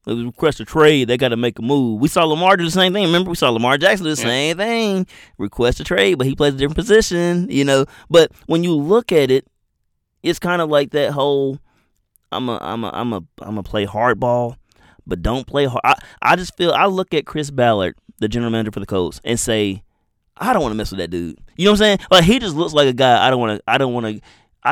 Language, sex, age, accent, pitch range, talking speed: English, male, 20-39, American, 105-150 Hz, 250 wpm